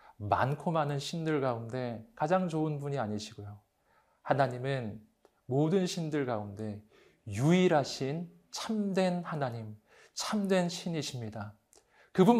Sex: male